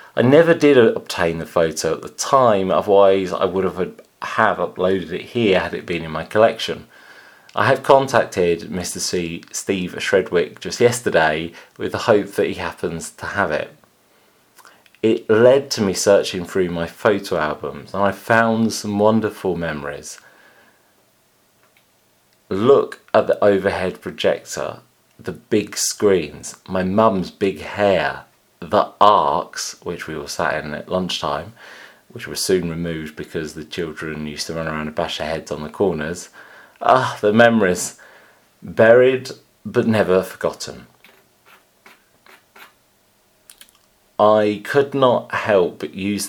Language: English